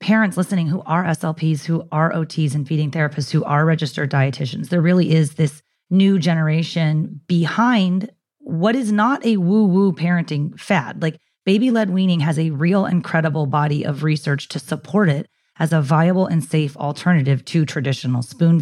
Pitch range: 140-180 Hz